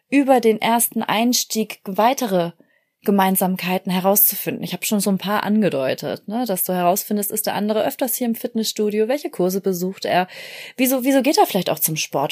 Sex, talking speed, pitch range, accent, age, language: female, 180 wpm, 190-235 Hz, German, 30-49, German